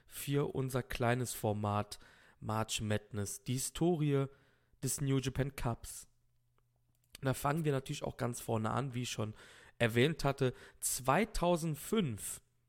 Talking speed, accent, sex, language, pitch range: 130 wpm, German, male, German, 110-135 Hz